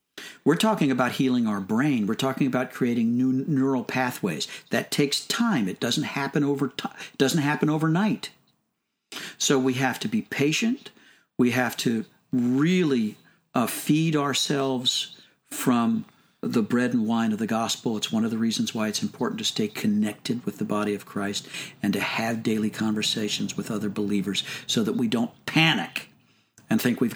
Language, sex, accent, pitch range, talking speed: English, male, American, 125-180 Hz, 170 wpm